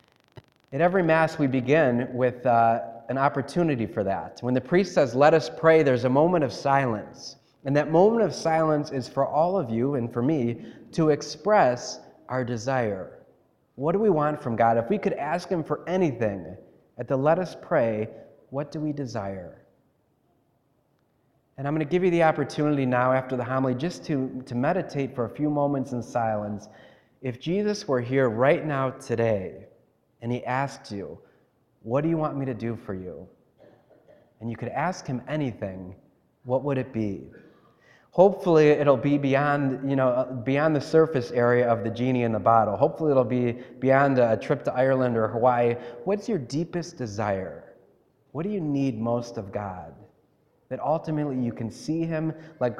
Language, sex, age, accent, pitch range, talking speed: English, male, 30-49, American, 115-150 Hz, 175 wpm